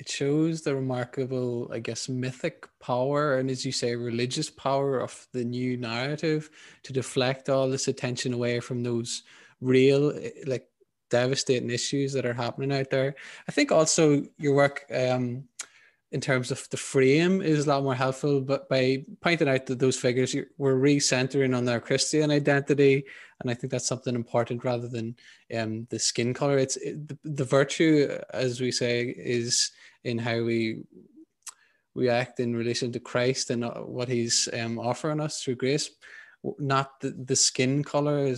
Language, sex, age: English, male, 20-39